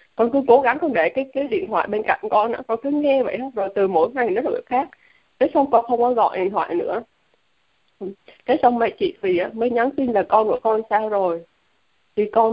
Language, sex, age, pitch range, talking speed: Vietnamese, female, 20-39, 205-260 Hz, 245 wpm